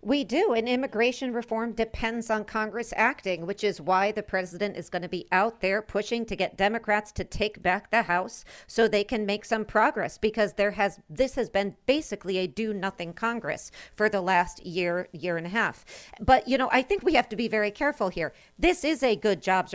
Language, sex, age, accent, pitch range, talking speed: English, female, 50-69, American, 190-230 Hz, 215 wpm